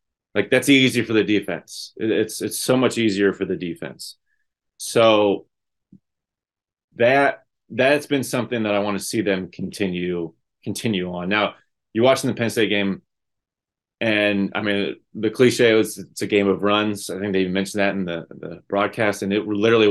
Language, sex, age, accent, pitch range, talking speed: English, male, 30-49, American, 95-120 Hz, 175 wpm